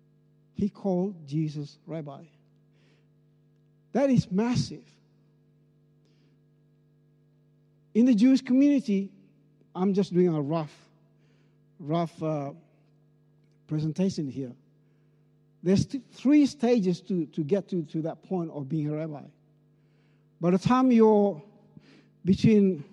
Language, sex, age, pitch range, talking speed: English, male, 60-79, 150-205 Hz, 100 wpm